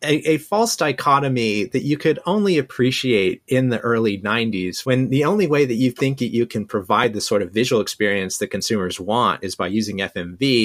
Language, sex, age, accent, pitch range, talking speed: English, male, 30-49, American, 95-135 Hz, 205 wpm